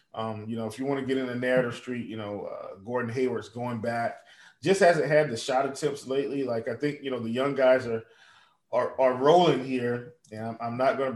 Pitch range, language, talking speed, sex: 110-135 Hz, English, 240 wpm, male